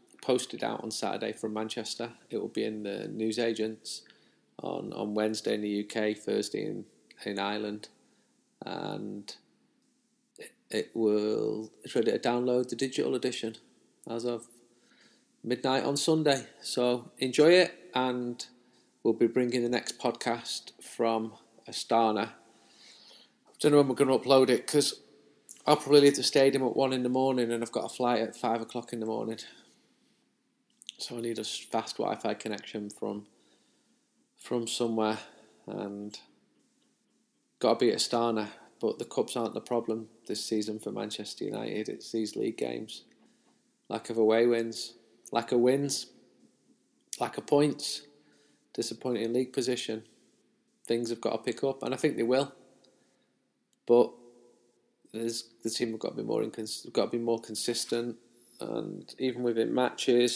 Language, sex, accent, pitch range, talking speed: English, male, British, 110-125 Hz, 155 wpm